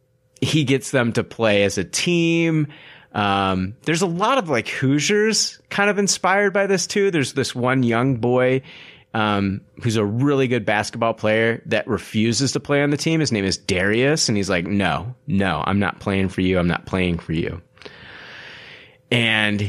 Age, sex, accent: 30-49, male, American